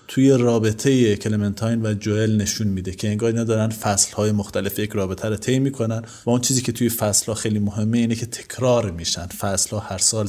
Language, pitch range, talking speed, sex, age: Persian, 110-140 Hz, 190 wpm, male, 30-49